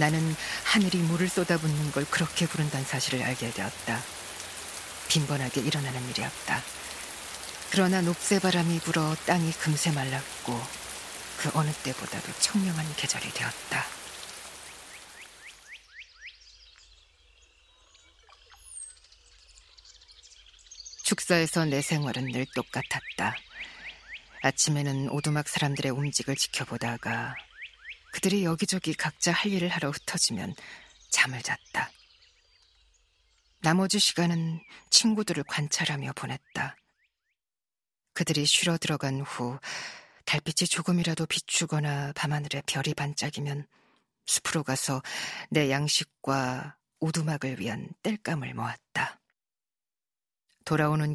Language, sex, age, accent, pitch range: Korean, female, 40-59, native, 135-170 Hz